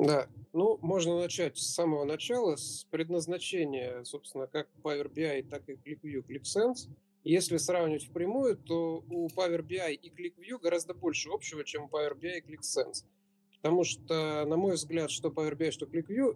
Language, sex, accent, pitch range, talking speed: Russian, male, native, 145-175 Hz, 165 wpm